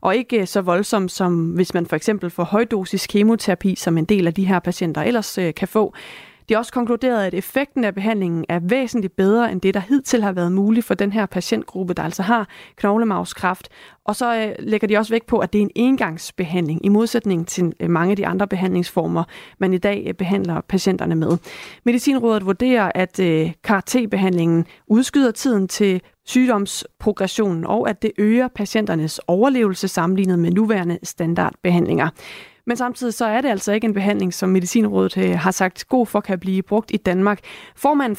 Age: 30-49